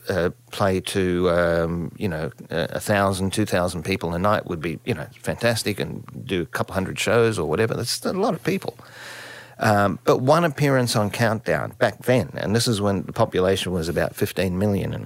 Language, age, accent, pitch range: English, 50-69, Australian, 90-120 Hz